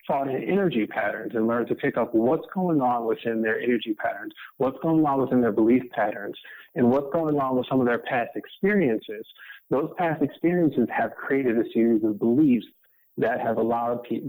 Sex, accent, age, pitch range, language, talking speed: male, American, 30-49, 110-150 Hz, English, 195 wpm